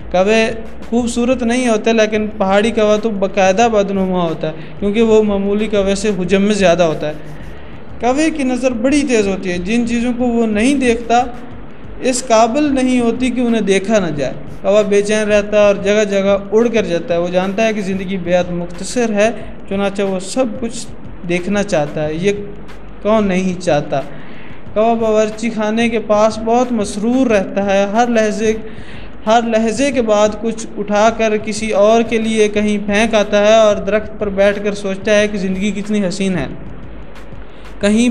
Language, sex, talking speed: Urdu, male, 175 wpm